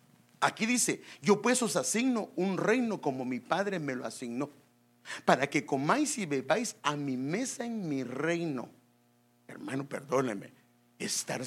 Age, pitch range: 50-69, 110-170 Hz